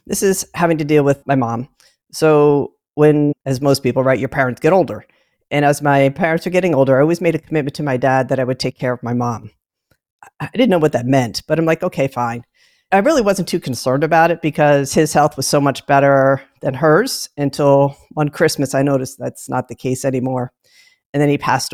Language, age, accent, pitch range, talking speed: English, 40-59, American, 130-155 Hz, 225 wpm